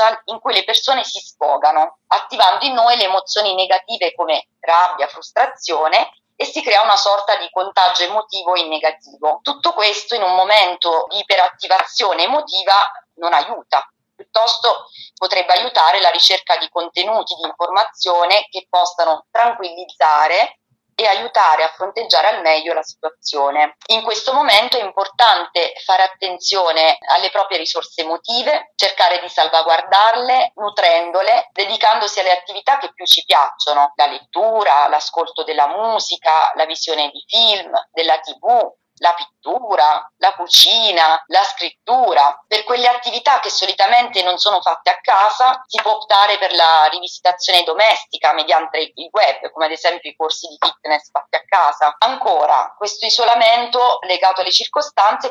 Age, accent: 30-49, native